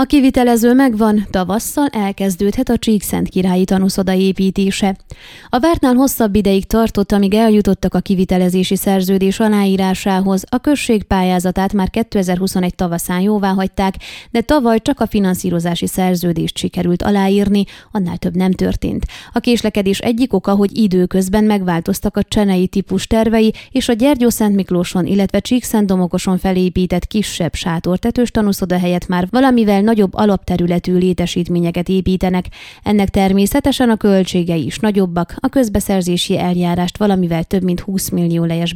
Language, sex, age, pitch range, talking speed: Hungarian, female, 20-39, 180-215 Hz, 130 wpm